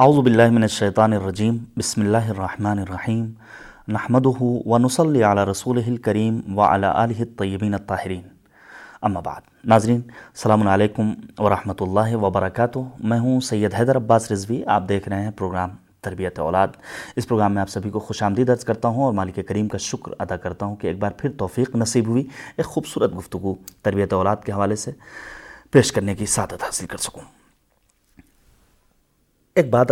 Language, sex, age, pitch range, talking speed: Urdu, male, 30-49, 100-125 Hz, 165 wpm